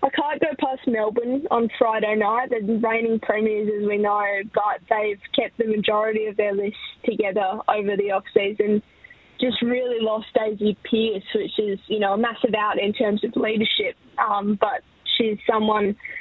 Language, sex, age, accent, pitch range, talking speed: English, female, 10-29, Australian, 210-230 Hz, 175 wpm